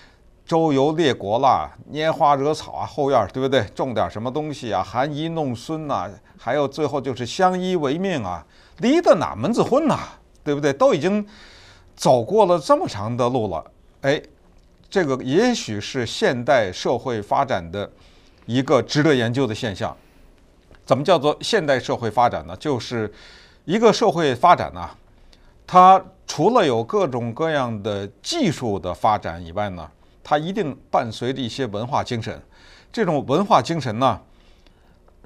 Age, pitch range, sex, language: 50-69, 115-185 Hz, male, Chinese